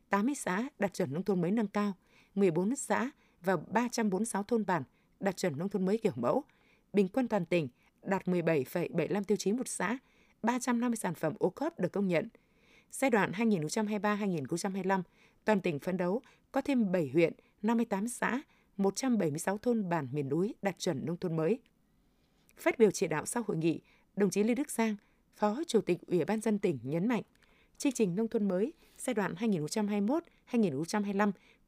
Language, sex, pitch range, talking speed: Vietnamese, female, 180-235 Hz, 170 wpm